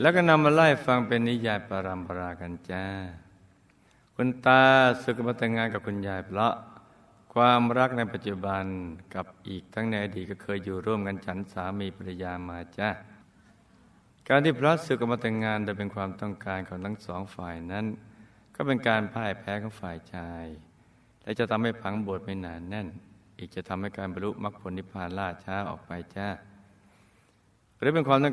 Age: 60-79